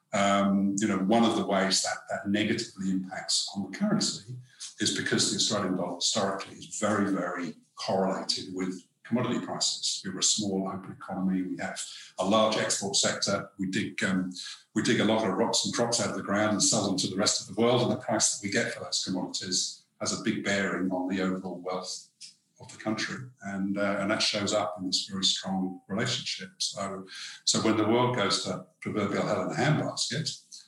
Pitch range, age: 95-110 Hz, 50-69